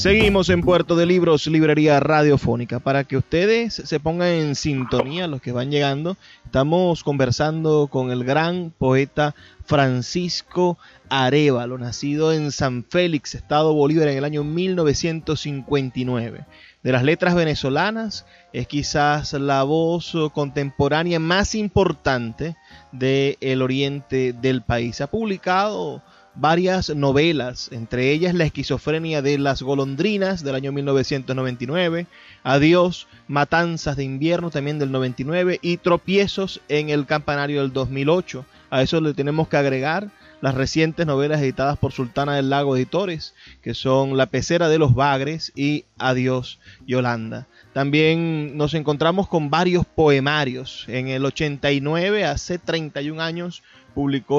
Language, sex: Spanish, male